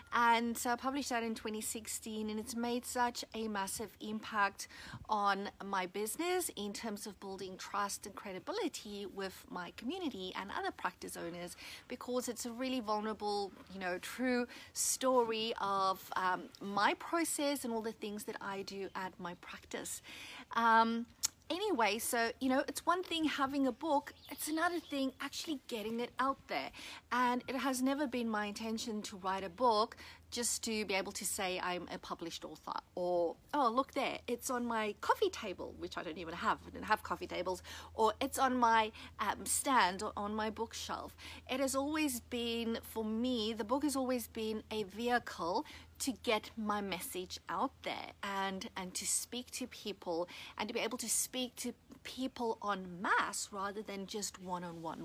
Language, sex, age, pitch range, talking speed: English, female, 40-59, 205-255 Hz, 175 wpm